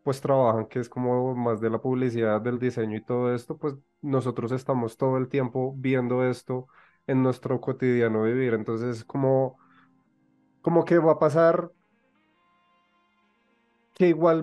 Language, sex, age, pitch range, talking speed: Spanish, male, 30-49, 120-150 Hz, 145 wpm